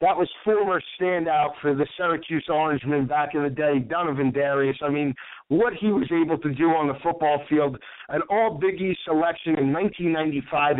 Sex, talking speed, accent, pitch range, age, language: male, 180 wpm, American, 145-175 Hz, 50-69, English